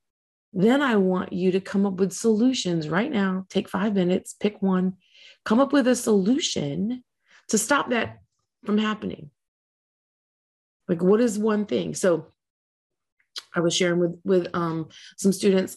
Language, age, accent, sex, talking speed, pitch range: English, 30-49, American, female, 150 wpm, 170-235 Hz